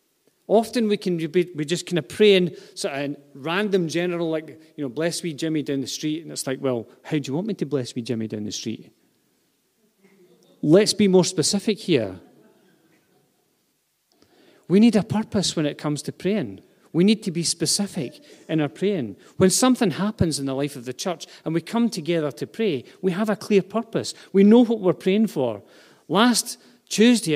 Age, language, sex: 40-59, English, male